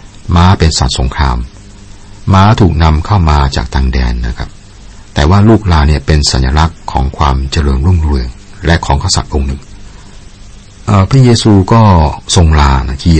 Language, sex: Thai, male